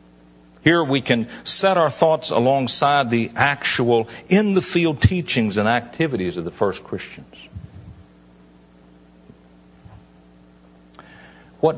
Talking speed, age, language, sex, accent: 90 wpm, 60-79, English, male, American